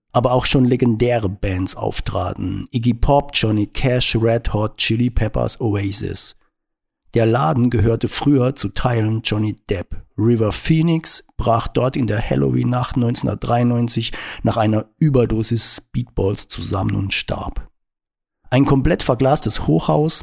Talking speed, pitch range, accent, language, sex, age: 125 wpm, 100-135 Hz, German, German, male, 50-69